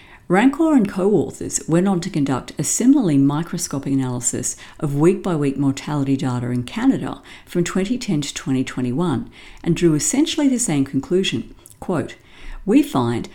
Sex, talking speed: female, 145 wpm